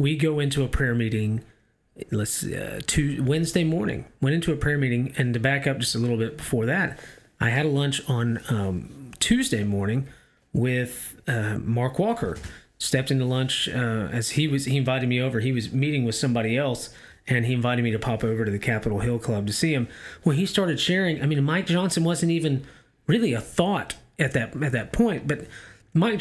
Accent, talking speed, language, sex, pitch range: American, 210 wpm, English, male, 115-145 Hz